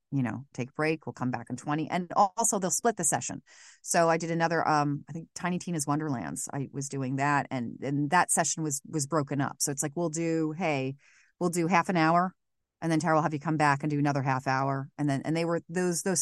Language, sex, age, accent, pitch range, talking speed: English, female, 30-49, American, 130-160 Hz, 255 wpm